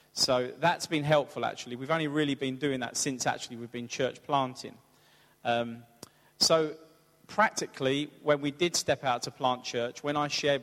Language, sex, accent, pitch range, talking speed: English, male, British, 125-145 Hz, 175 wpm